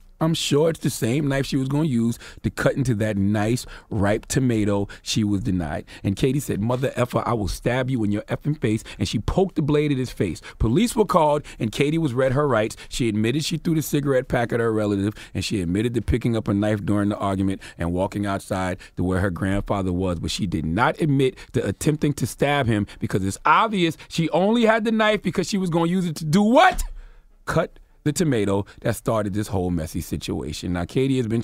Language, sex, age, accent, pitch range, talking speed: English, male, 30-49, American, 100-150 Hz, 230 wpm